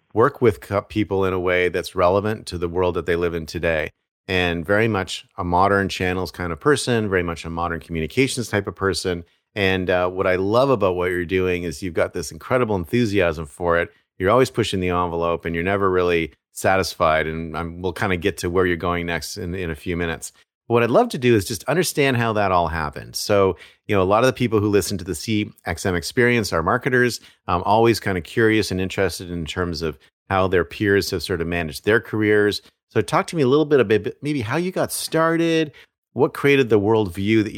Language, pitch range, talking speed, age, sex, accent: English, 85-110 Hz, 225 wpm, 40-59, male, American